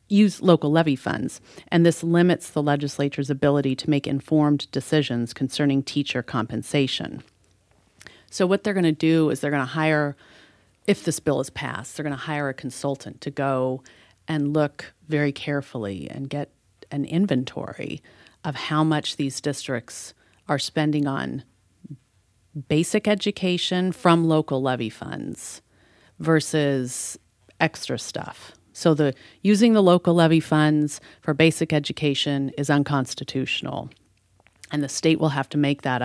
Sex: female